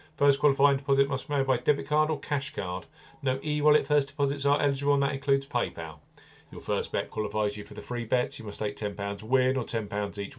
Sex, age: male, 40-59